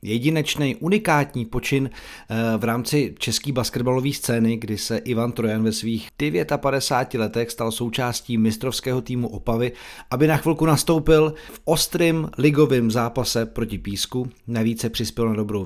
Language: Czech